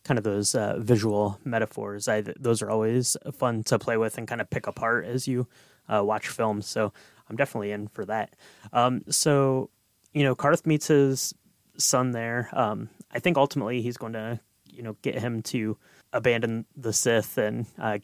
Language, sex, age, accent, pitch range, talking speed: English, male, 20-39, American, 110-130 Hz, 185 wpm